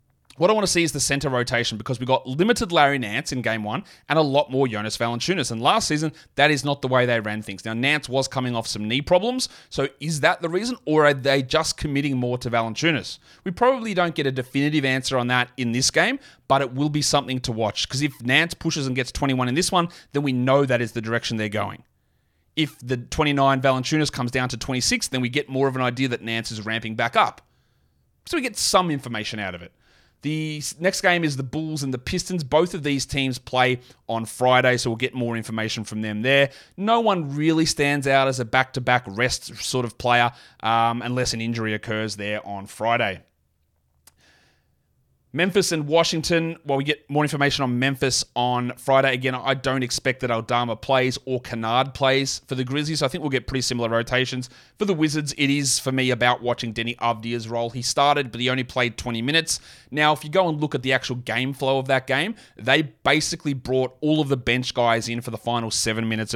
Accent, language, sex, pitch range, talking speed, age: Australian, English, male, 120-150 Hz, 225 wpm, 30-49